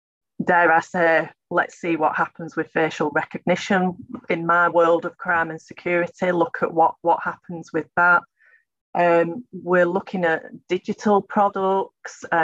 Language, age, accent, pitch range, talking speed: English, 30-49, British, 160-185 Hz, 145 wpm